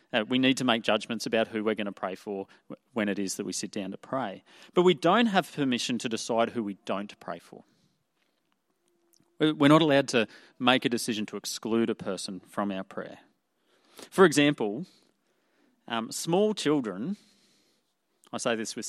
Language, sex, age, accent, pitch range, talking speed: English, male, 30-49, Australian, 110-150 Hz, 180 wpm